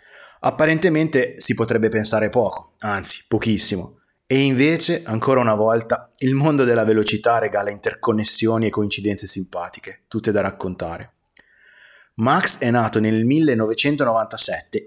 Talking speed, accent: 115 wpm, native